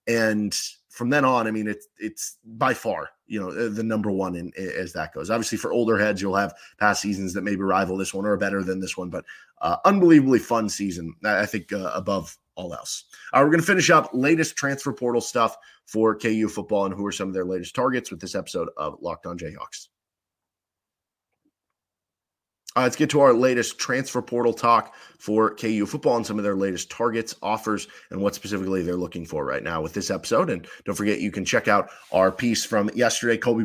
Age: 30-49